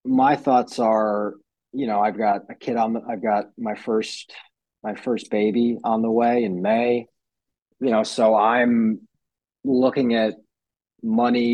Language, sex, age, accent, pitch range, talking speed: English, male, 20-39, American, 95-115 Hz, 155 wpm